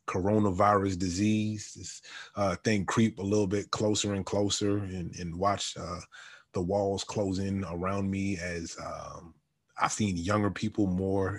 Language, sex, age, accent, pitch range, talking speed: English, male, 20-39, American, 95-105 Hz, 150 wpm